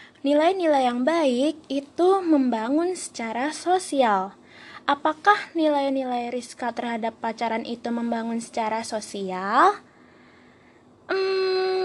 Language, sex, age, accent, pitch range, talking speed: Indonesian, female, 20-39, native, 235-295 Hz, 85 wpm